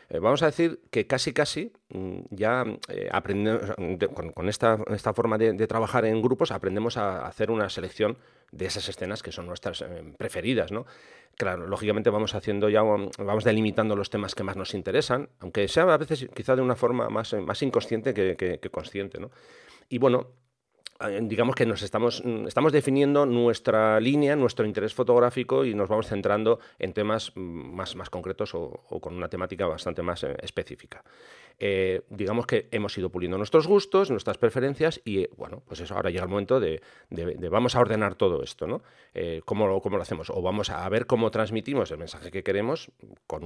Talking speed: 185 wpm